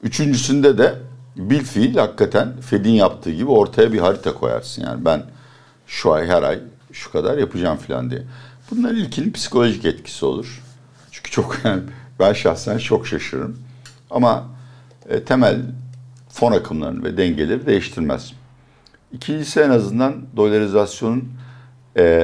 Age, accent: 60-79, native